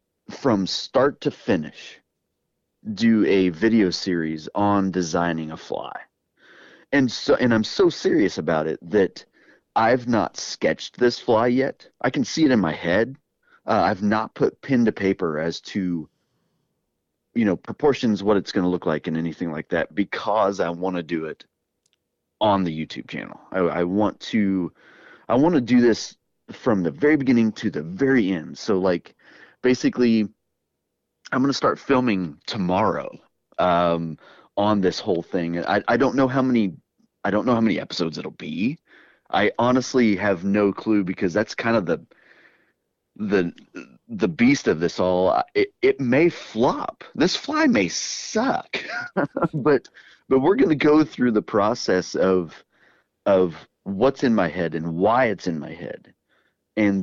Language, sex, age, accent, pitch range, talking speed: English, male, 30-49, American, 85-125 Hz, 165 wpm